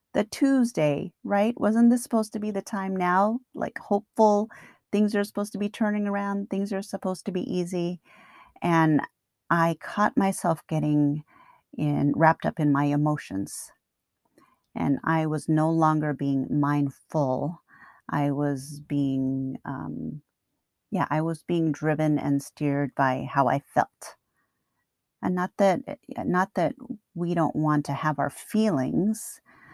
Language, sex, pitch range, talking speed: English, female, 145-195 Hz, 145 wpm